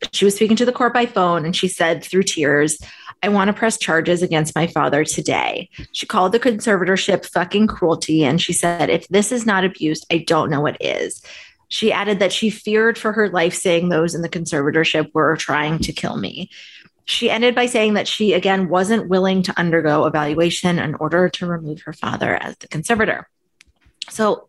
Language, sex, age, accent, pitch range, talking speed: English, female, 20-39, American, 160-205 Hz, 200 wpm